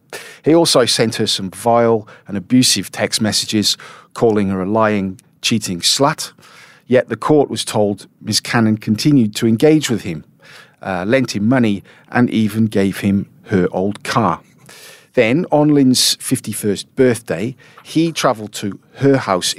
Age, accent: 40-59, British